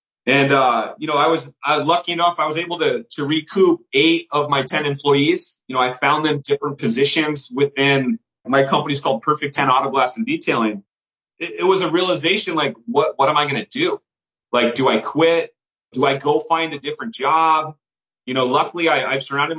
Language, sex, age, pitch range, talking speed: English, male, 30-49, 140-175 Hz, 200 wpm